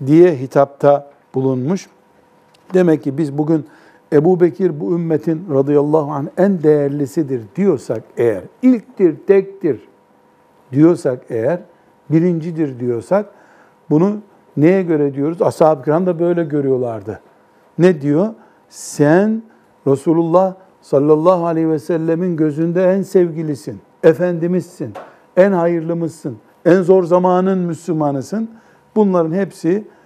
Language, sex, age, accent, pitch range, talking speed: Turkish, male, 60-79, native, 145-185 Hz, 105 wpm